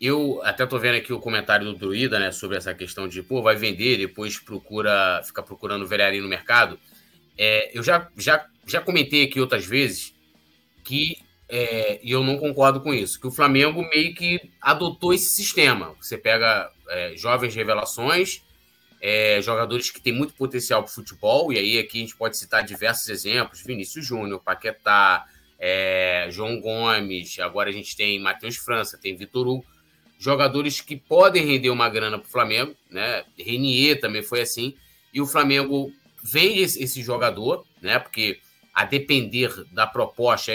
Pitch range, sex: 110-140 Hz, male